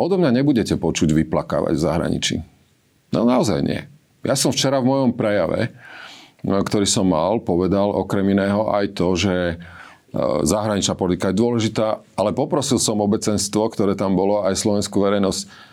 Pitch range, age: 90-110 Hz, 40-59